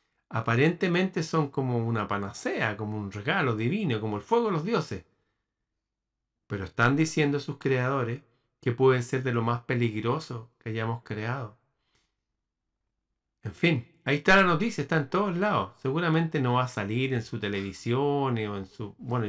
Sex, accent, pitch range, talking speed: male, Argentinian, 110-140 Hz, 165 wpm